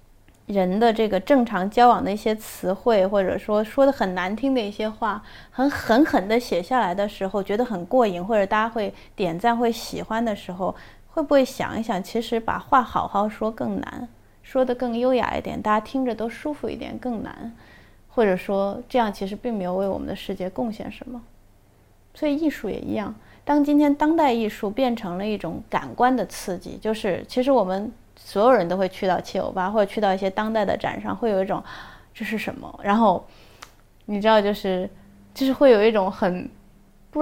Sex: female